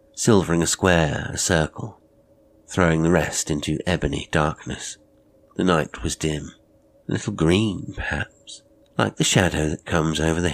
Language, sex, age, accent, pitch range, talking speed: English, male, 50-69, British, 80-95 Hz, 150 wpm